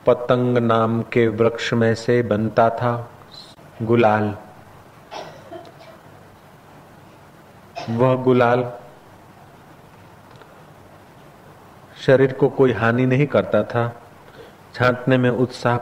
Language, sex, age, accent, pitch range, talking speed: Hindi, male, 40-59, native, 115-140 Hz, 80 wpm